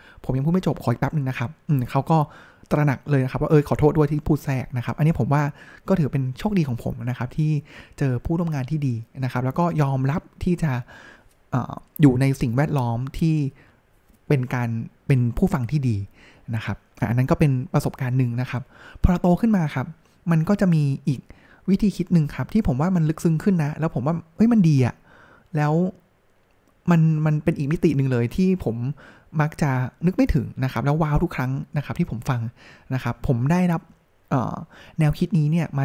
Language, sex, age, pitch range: Thai, male, 20-39, 130-165 Hz